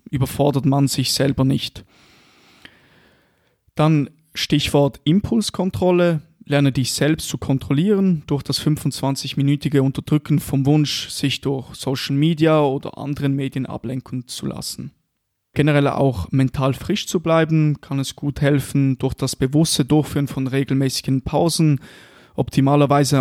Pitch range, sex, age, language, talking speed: 130-150 Hz, male, 20-39, German, 120 wpm